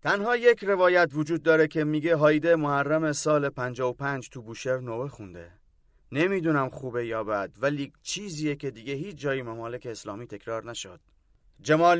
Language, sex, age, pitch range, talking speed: Persian, male, 30-49, 125-165 Hz, 150 wpm